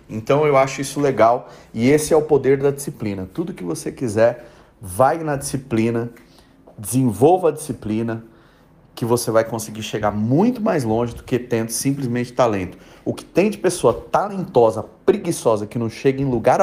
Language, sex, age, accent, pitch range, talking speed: Portuguese, male, 40-59, Brazilian, 115-145 Hz, 170 wpm